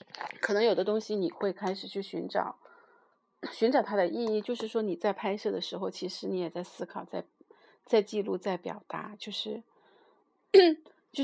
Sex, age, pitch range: female, 30-49, 185-240 Hz